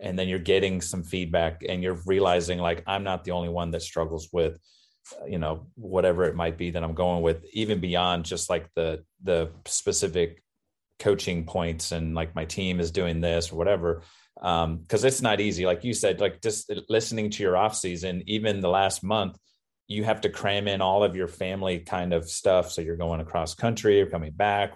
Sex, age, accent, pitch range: male, 30-49, American, 85-100 Hz